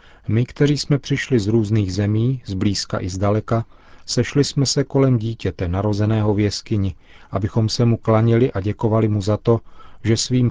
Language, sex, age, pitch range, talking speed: Czech, male, 40-59, 100-115 Hz, 170 wpm